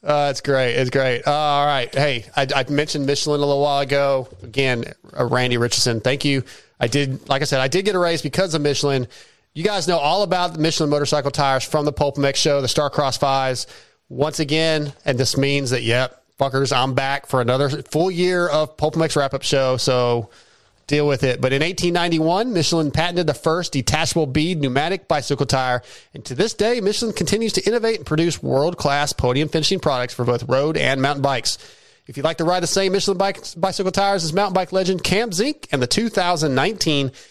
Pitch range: 135-170 Hz